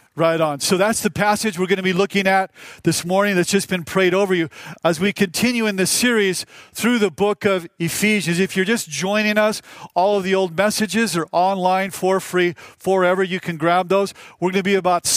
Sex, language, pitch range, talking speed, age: male, English, 185-215 Hz, 220 wpm, 40-59